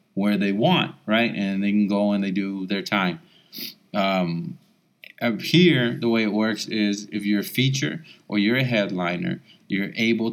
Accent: American